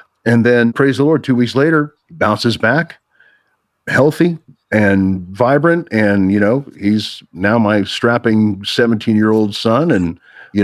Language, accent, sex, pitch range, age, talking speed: English, American, male, 100-120 Hz, 50-69, 150 wpm